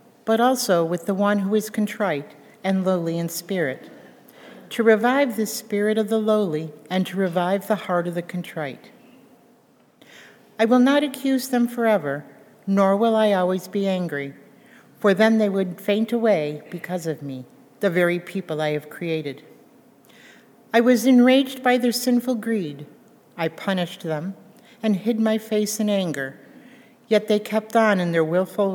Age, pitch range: 60-79, 175-230 Hz